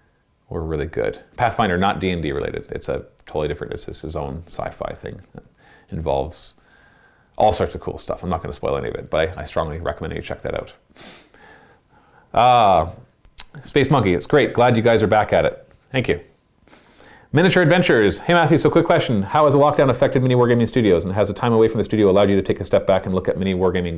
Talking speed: 220 wpm